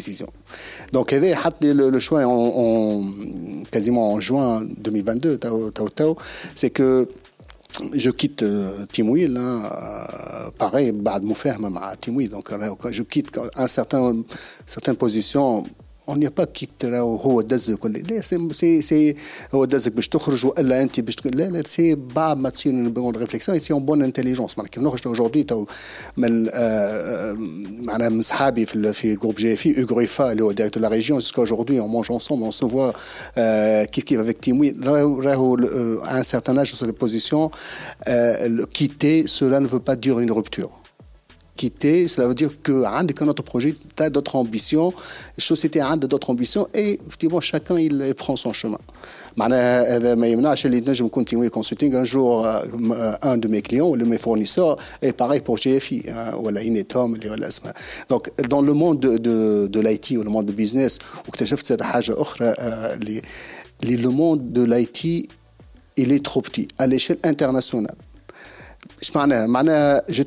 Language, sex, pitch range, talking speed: Arabic, male, 115-145 Hz, 125 wpm